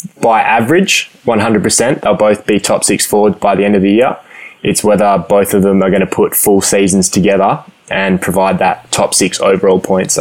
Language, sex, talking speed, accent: English, male, 200 wpm, Australian